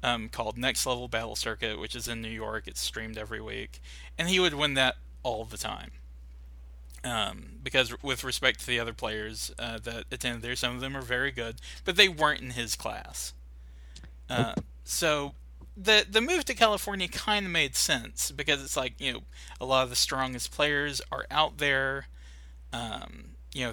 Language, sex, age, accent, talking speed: English, male, 20-39, American, 190 wpm